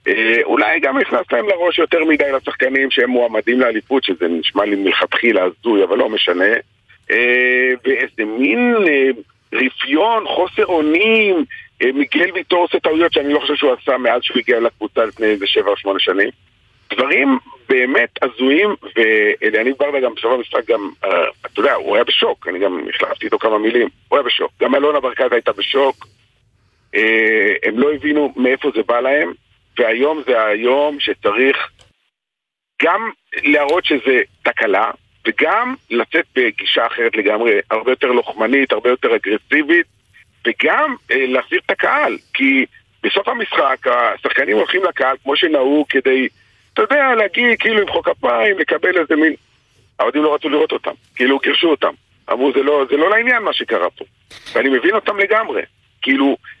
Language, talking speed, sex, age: Hebrew, 145 wpm, male, 50-69